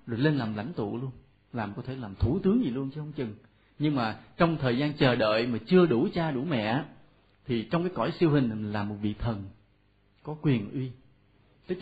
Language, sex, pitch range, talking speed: Vietnamese, male, 110-160 Hz, 225 wpm